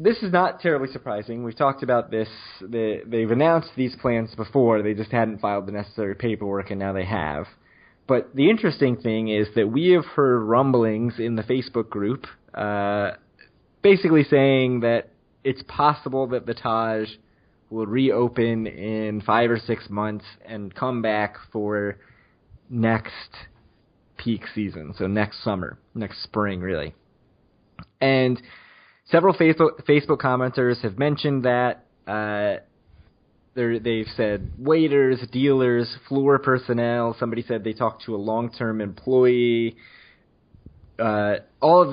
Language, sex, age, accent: English, male, 20-39, American